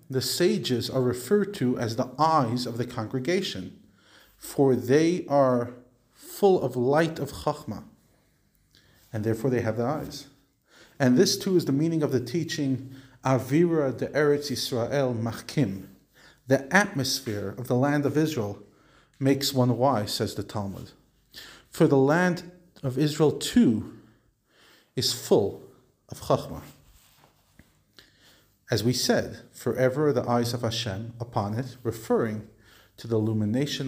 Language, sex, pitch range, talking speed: English, male, 115-145 Hz, 135 wpm